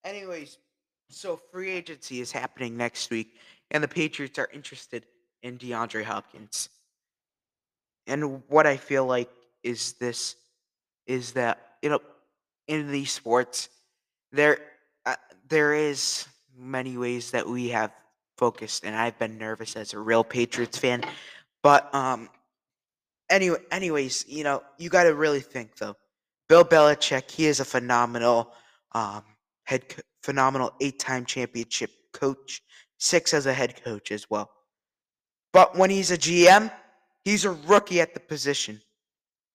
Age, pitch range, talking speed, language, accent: 20-39, 120-170 Hz, 140 wpm, English, American